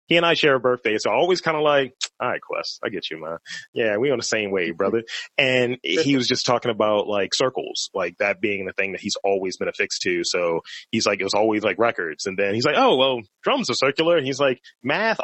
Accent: American